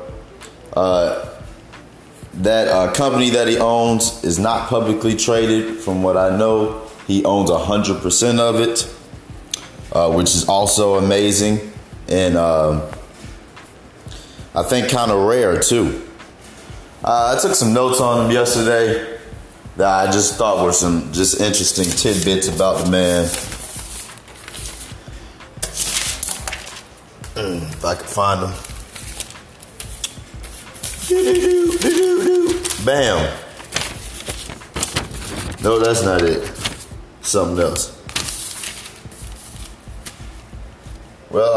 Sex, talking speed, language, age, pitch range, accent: male, 100 wpm, English, 30-49, 95-115 Hz, American